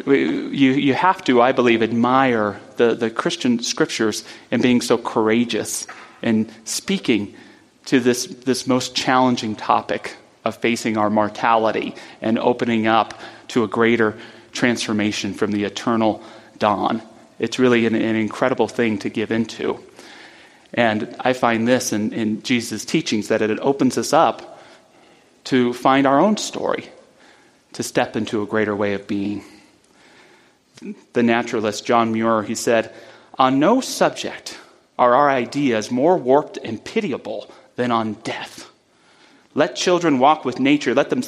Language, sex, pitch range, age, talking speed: English, male, 110-135 Hz, 30-49, 135 wpm